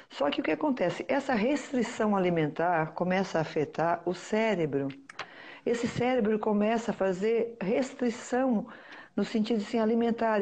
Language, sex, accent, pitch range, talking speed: Portuguese, female, Brazilian, 185-250 Hz, 140 wpm